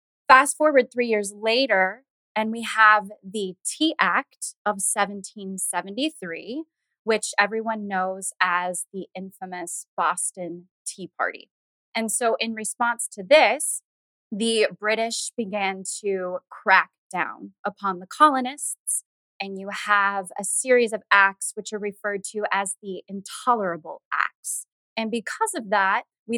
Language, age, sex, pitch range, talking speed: English, 20-39, female, 190-230 Hz, 130 wpm